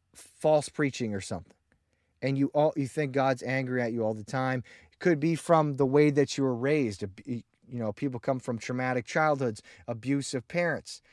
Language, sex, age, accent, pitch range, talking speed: English, male, 30-49, American, 110-145 Hz, 190 wpm